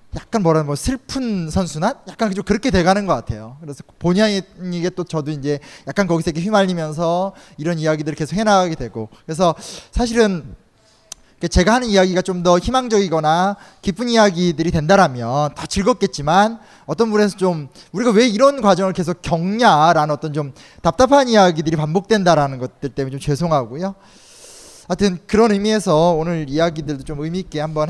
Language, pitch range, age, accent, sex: Korean, 155-210 Hz, 20-39, native, male